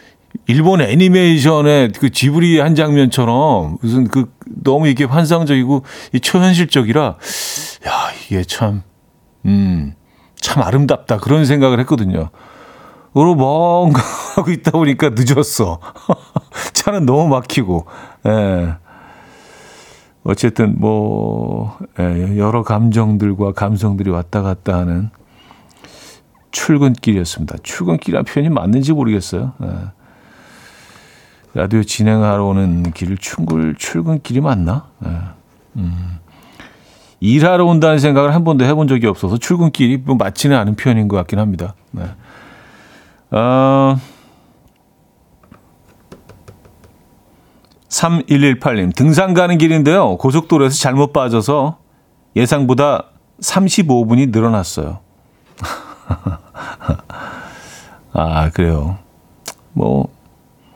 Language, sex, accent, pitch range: Korean, male, native, 100-145 Hz